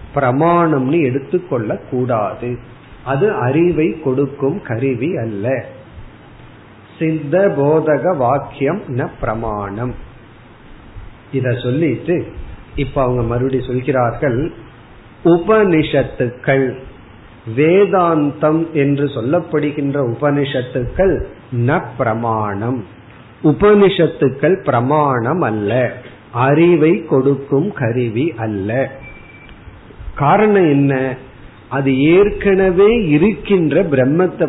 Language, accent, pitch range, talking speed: Tamil, native, 125-160 Hz, 55 wpm